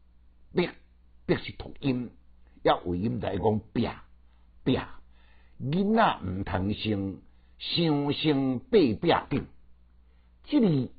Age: 60-79